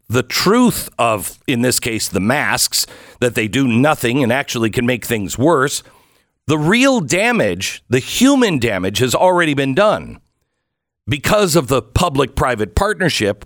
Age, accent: 50-69, American